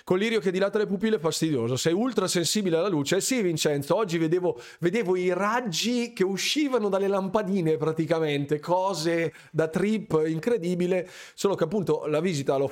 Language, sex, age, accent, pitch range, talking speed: Italian, male, 20-39, native, 150-190 Hz, 170 wpm